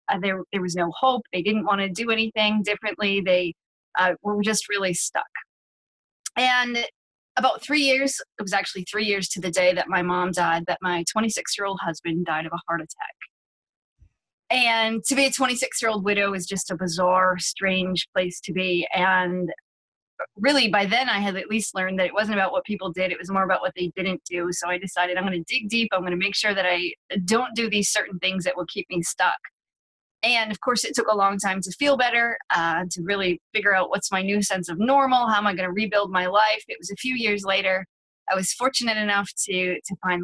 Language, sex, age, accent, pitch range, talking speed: English, female, 20-39, American, 180-220 Hz, 220 wpm